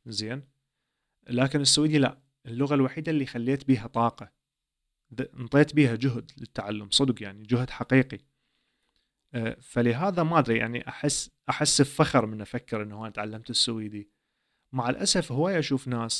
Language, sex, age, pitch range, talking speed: Arabic, male, 30-49, 115-140 Hz, 135 wpm